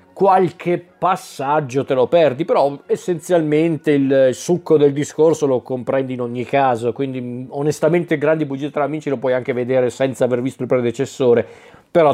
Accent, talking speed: native, 160 wpm